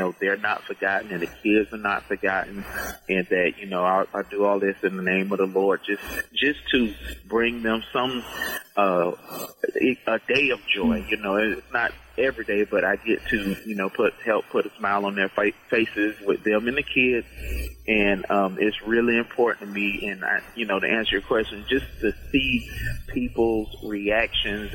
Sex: male